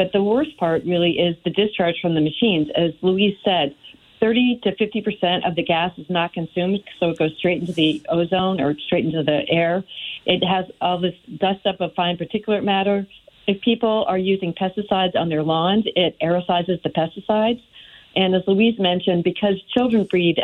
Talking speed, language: 190 wpm, English